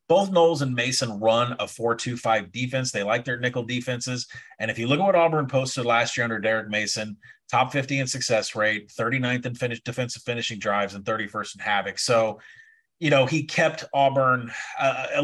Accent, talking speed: American, 190 wpm